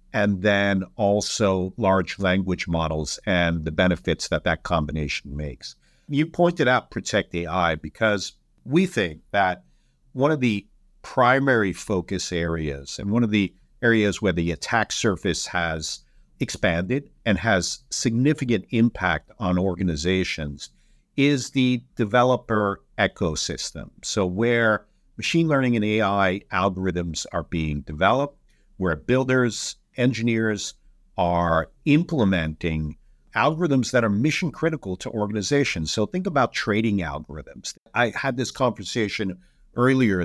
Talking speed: 120 wpm